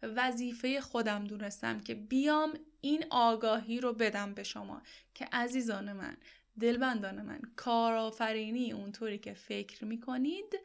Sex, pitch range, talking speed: female, 220-285 Hz, 120 wpm